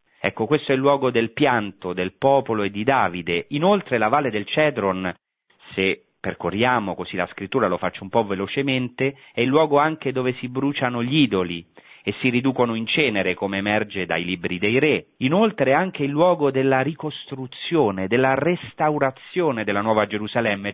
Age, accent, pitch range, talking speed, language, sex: 40-59, native, 105-155 Hz, 170 wpm, Italian, male